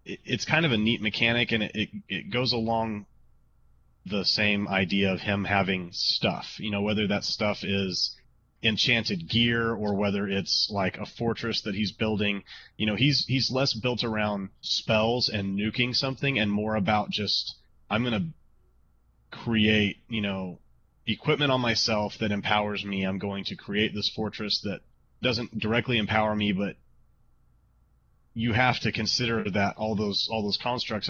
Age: 30-49